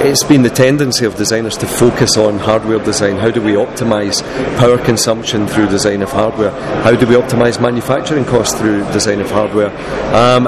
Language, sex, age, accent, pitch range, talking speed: English, male, 40-59, British, 105-120 Hz, 185 wpm